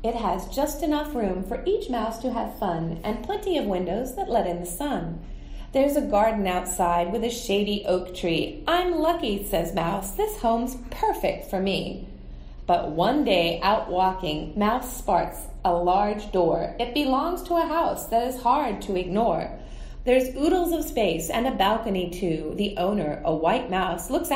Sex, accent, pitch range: female, American, 185-275 Hz